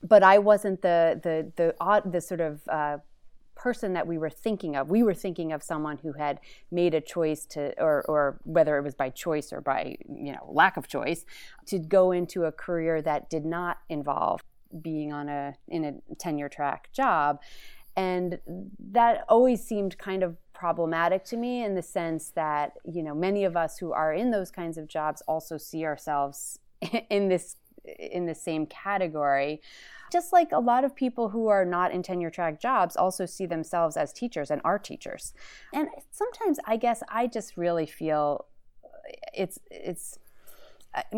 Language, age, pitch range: English, 30-49, 160-215 Hz